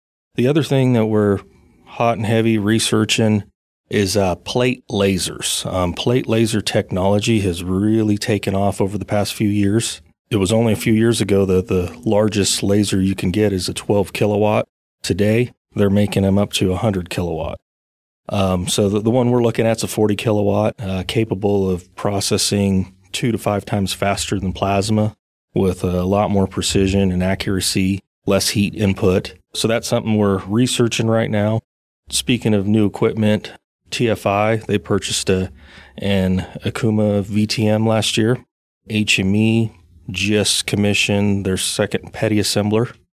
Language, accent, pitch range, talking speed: English, American, 95-110 Hz, 155 wpm